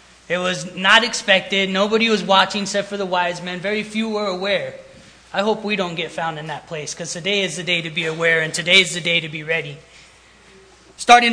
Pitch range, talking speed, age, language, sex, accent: 170-215 Hz, 220 wpm, 20-39, English, male, American